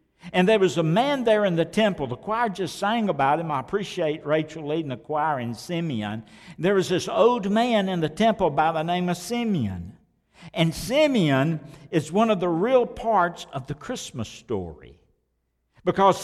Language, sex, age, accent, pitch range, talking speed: English, male, 60-79, American, 160-215 Hz, 180 wpm